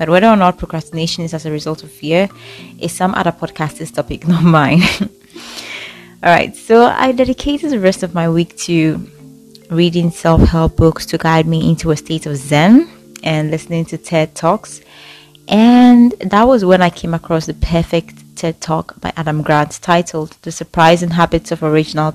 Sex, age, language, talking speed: female, 20-39, English, 175 wpm